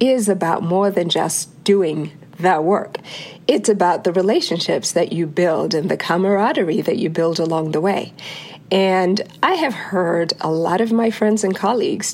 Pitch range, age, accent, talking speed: 170-225 Hz, 50-69, American, 175 wpm